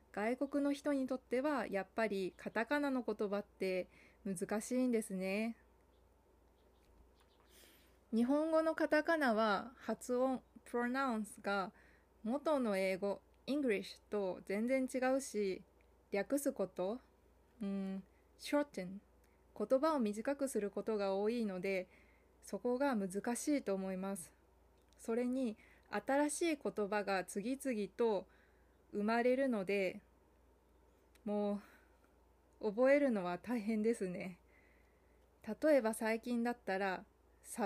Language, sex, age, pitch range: Japanese, female, 20-39, 195-260 Hz